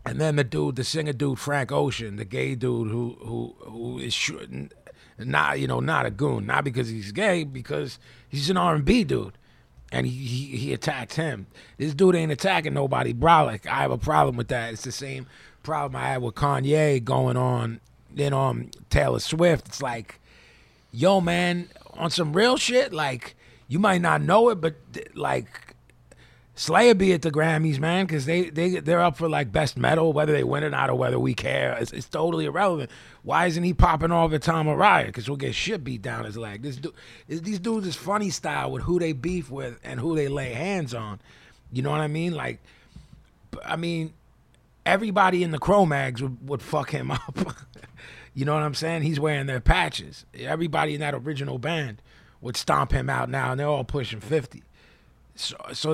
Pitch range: 125-165 Hz